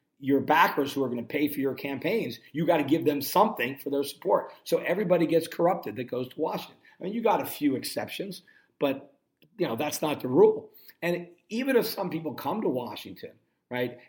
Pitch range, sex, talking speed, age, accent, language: 135-180 Hz, male, 205 wpm, 50-69, American, English